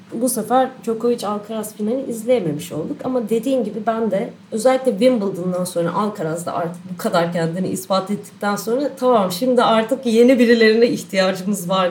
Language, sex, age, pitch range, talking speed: Turkish, female, 30-49, 180-225 Hz, 155 wpm